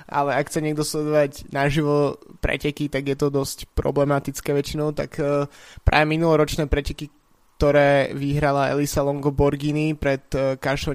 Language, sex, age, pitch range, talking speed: Slovak, male, 20-39, 135-150 Hz, 125 wpm